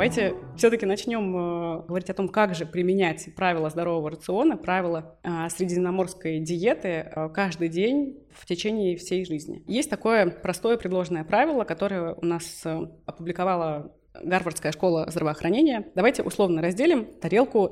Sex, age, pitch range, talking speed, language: female, 20-39, 170-205 Hz, 125 wpm, Russian